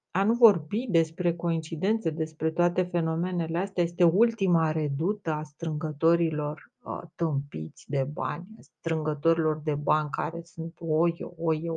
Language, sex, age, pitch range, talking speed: Romanian, female, 30-49, 165-195 Hz, 120 wpm